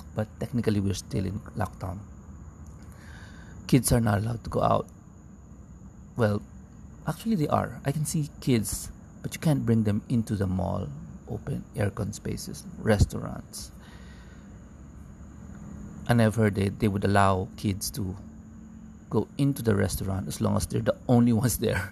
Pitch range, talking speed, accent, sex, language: 95-110 Hz, 150 wpm, Filipino, male, English